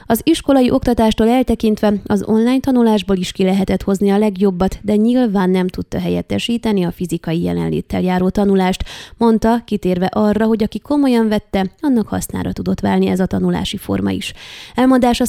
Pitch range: 180-220 Hz